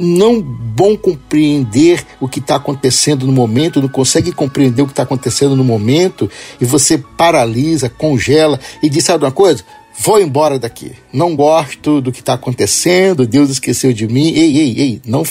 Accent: Brazilian